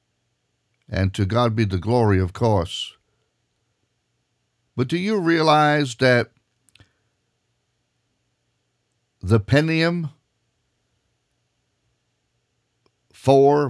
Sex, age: male, 50-69